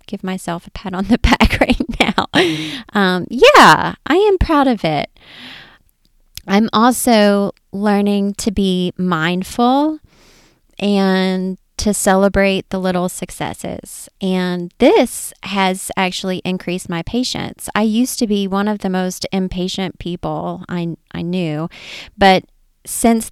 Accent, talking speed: American, 130 wpm